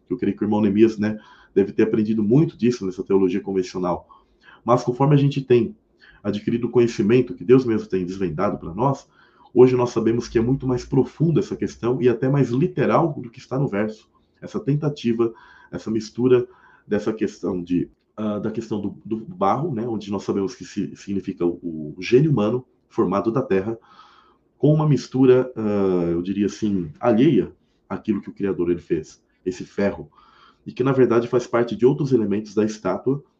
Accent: Brazilian